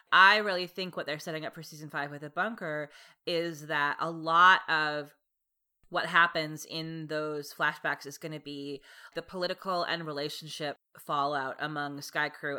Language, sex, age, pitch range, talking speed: English, female, 30-49, 150-180 Hz, 165 wpm